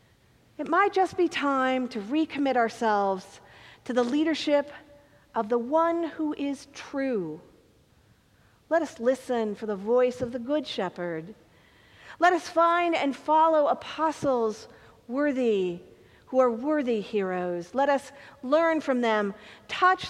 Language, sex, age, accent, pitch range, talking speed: English, female, 40-59, American, 225-290 Hz, 130 wpm